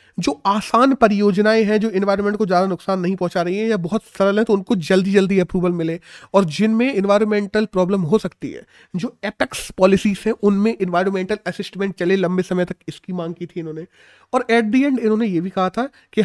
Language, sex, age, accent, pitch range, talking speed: Hindi, male, 30-49, native, 180-225 Hz, 210 wpm